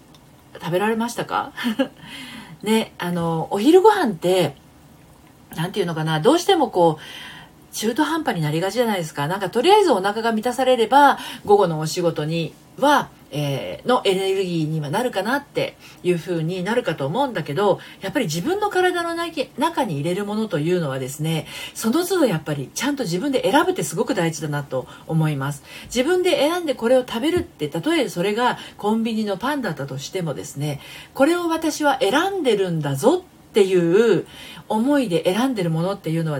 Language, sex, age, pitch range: Japanese, female, 40-59, 155-265 Hz